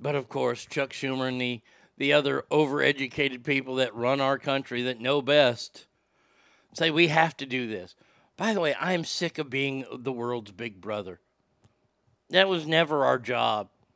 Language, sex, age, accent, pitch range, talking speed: English, male, 50-69, American, 135-170 Hz, 175 wpm